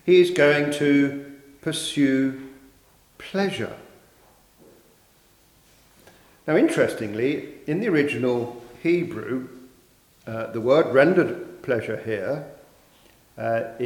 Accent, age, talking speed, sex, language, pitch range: British, 50-69, 80 wpm, male, English, 135-190 Hz